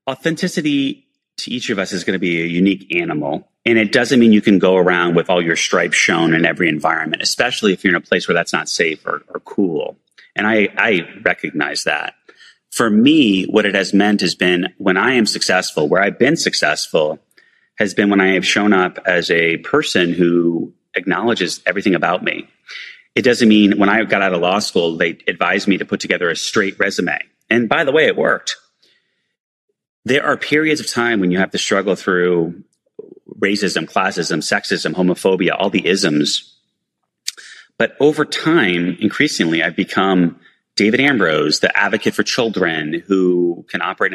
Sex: male